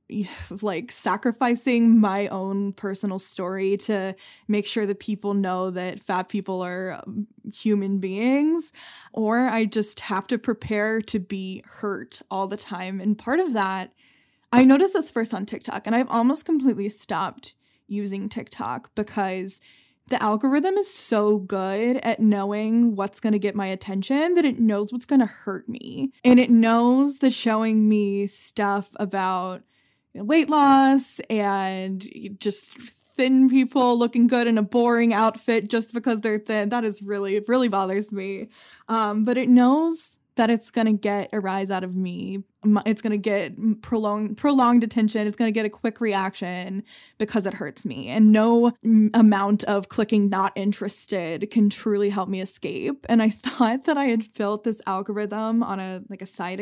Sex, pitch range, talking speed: female, 200-240 Hz, 165 wpm